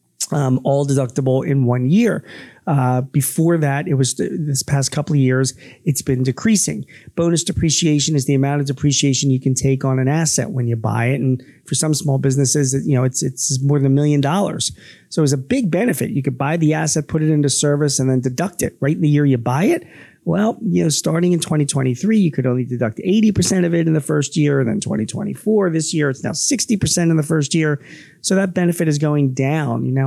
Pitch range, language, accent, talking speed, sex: 130-155 Hz, English, American, 225 wpm, male